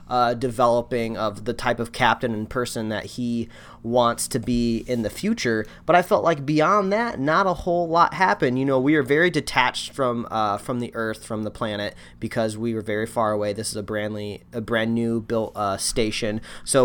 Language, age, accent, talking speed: English, 30-49, American, 210 wpm